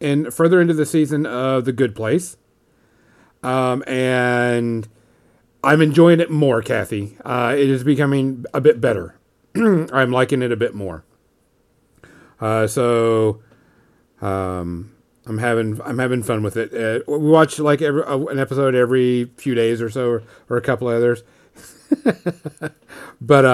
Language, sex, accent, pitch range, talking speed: English, male, American, 115-135 Hz, 155 wpm